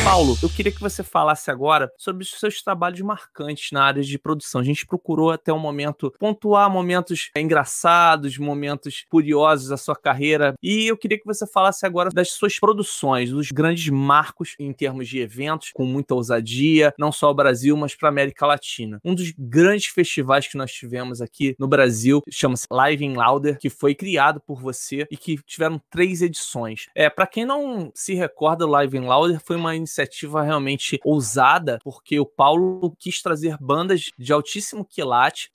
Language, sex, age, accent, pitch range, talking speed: Portuguese, male, 20-39, Brazilian, 135-185 Hz, 175 wpm